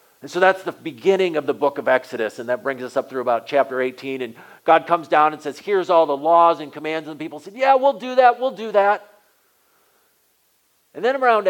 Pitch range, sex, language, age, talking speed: 135-190 Hz, male, English, 40-59, 230 wpm